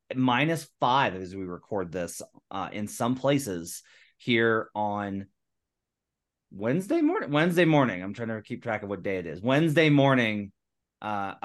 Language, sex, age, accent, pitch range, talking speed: English, male, 30-49, American, 100-130 Hz, 150 wpm